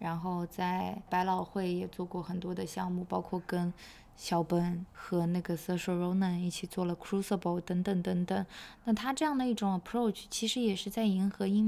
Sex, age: female, 20-39